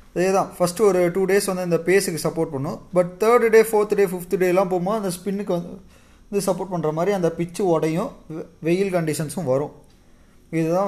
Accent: native